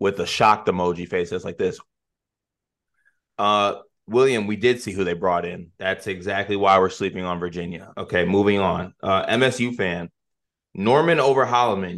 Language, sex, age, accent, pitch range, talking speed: English, male, 20-39, American, 95-110 Hz, 160 wpm